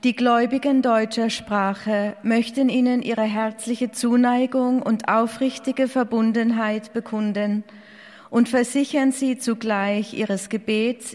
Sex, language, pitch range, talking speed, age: female, German, 210-245 Hz, 100 wpm, 40-59